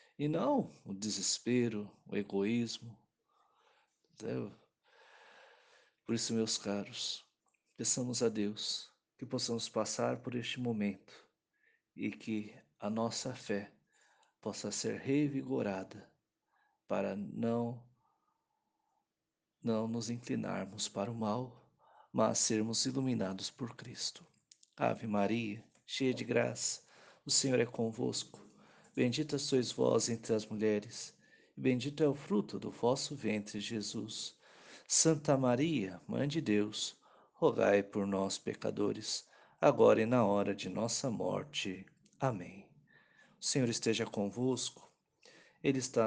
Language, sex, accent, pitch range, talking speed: Portuguese, male, Brazilian, 105-125 Hz, 115 wpm